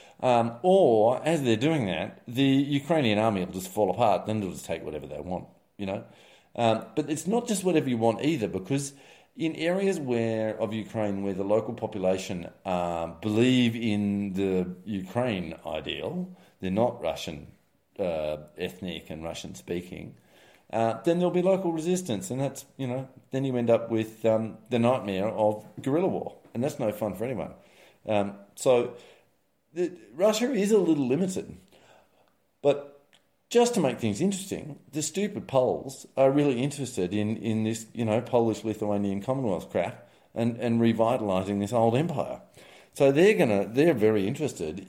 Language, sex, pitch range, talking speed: English, male, 105-150 Hz, 160 wpm